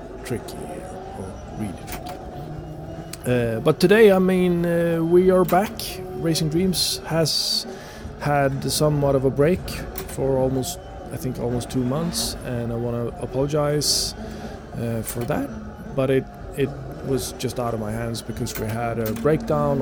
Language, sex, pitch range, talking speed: Italian, male, 110-140 Hz, 150 wpm